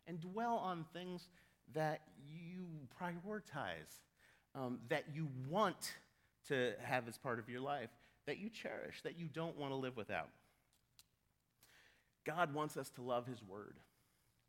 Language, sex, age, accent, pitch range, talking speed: English, male, 40-59, American, 115-160 Hz, 145 wpm